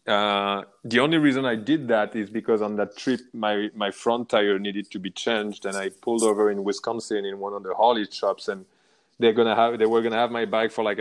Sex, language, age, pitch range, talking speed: male, English, 20-39, 105-125 Hz, 245 wpm